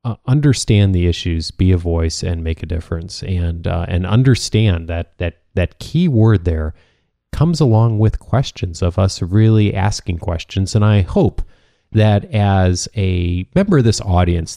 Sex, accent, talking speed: male, American, 165 wpm